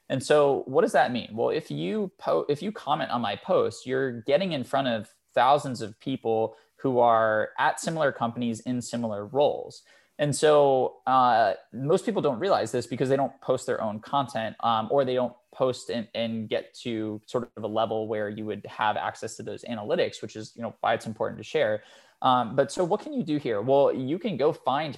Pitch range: 110-135 Hz